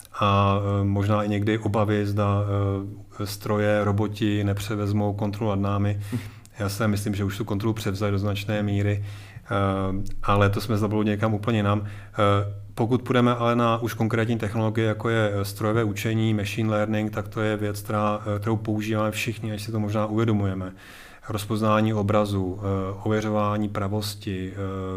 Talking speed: 140 wpm